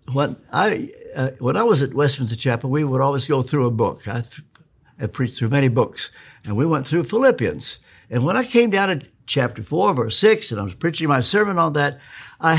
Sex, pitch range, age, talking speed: male, 125-170 Hz, 60-79, 225 wpm